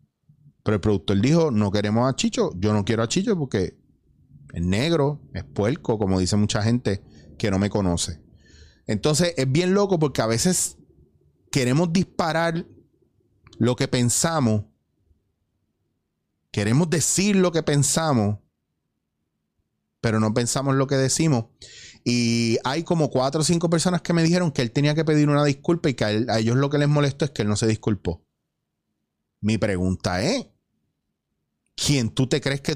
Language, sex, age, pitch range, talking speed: Spanish, male, 30-49, 105-175 Hz, 165 wpm